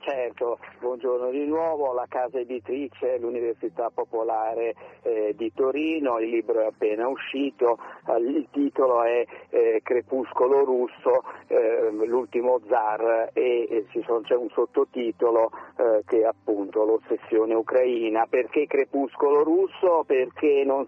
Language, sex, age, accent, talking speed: Italian, male, 50-69, native, 120 wpm